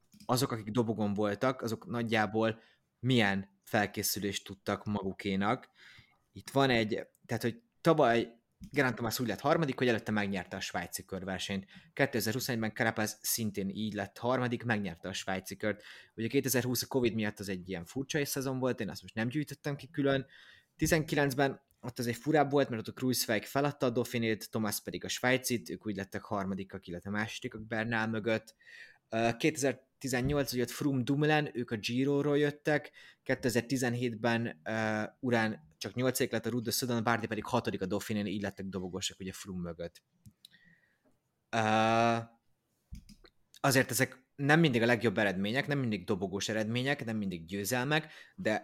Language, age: Hungarian, 20-39